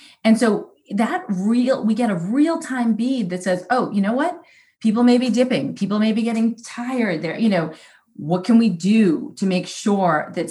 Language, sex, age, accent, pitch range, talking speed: English, female, 30-49, American, 175-230 Hz, 205 wpm